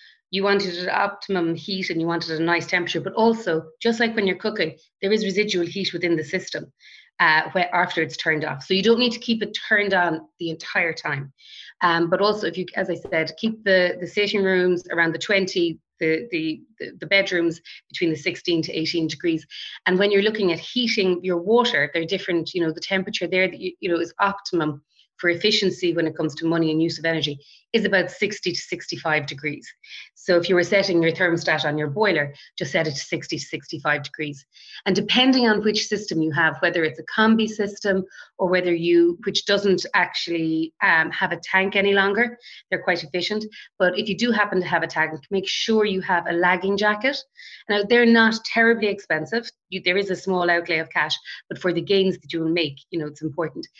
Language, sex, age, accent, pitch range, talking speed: English, female, 30-49, Irish, 165-200 Hz, 215 wpm